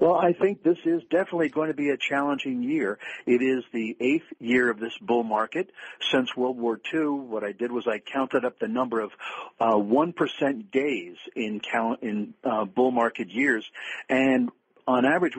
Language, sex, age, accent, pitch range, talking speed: English, male, 50-69, American, 115-160 Hz, 185 wpm